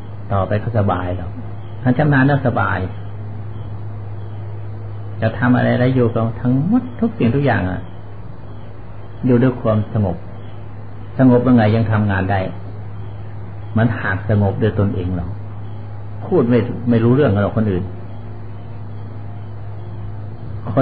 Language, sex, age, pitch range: Thai, male, 60-79, 105-120 Hz